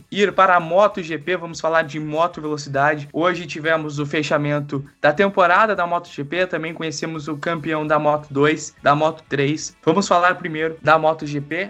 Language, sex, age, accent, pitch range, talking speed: Portuguese, male, 20-39, Brazilian, 150-185 Hz, 155 wpm